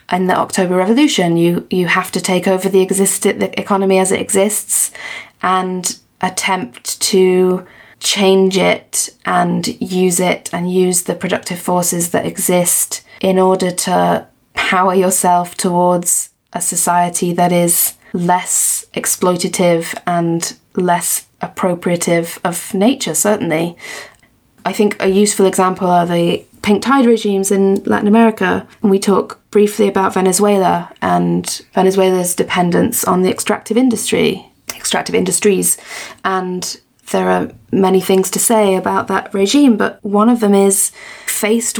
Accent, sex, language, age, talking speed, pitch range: British, female, English, 20-39, 135 wpm, 175-205 Hz